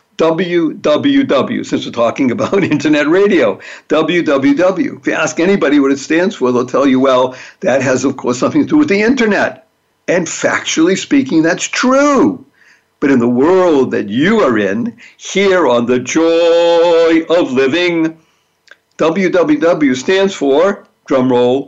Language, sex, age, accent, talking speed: English, male, 60-79, American, 145 wpm